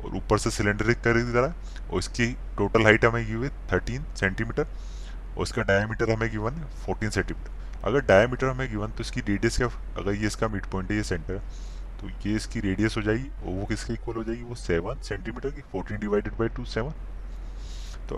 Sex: male